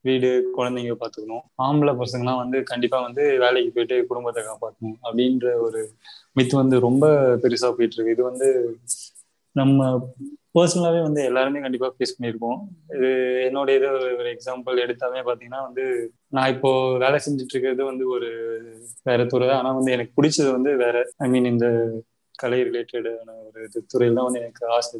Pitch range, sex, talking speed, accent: 120-135 Hz, male, 145 wpm, native